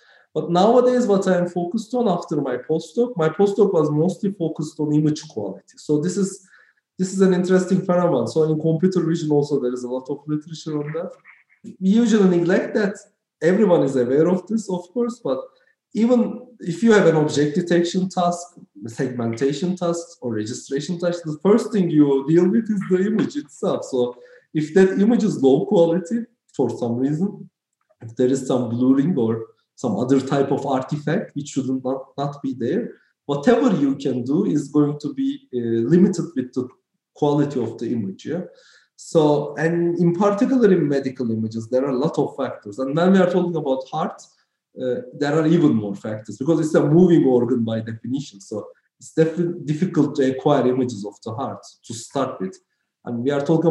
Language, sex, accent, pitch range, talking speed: English, male, Turkish, 135-185 Hz, 185 wpm